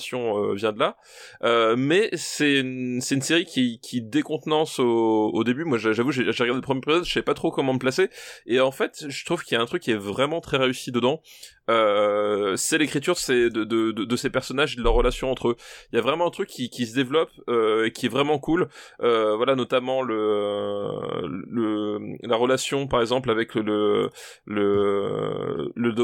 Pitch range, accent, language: 115-145 Hz, French, French